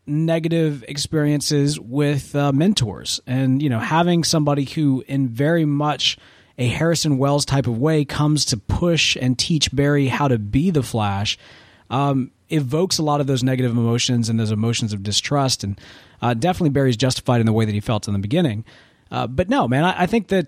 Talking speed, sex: 195 wpm, male